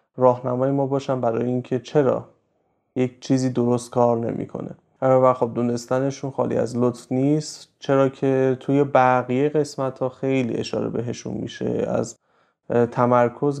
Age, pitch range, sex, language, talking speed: 30-49, 120-140 Hz, male, Persian, 130 wpm